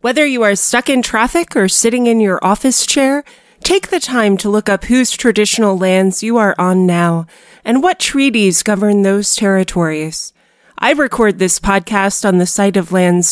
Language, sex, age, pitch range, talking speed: English, female, 30-49, 185-230 Hz, 180 wpm